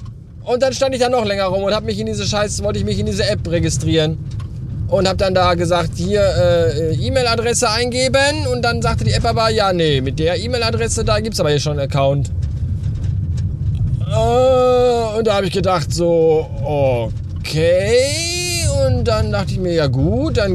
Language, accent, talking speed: German, German, 185 wpm